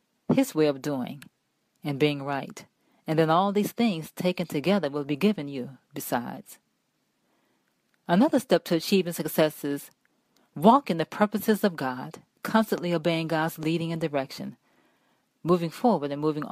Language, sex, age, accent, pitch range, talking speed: English, female, 40-59, American, 155-210 Hz, 150 wpm